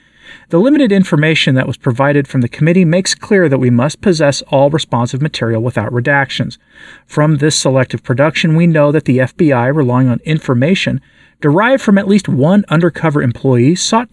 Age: 40-59